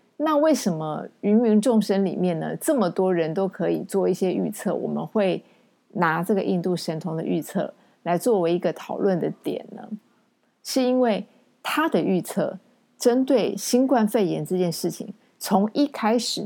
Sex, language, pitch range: female, Chinese, 185-240 Hz